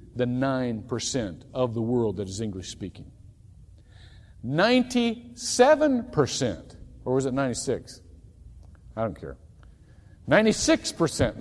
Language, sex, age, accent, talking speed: English, male, 50-69, American, 90 wpm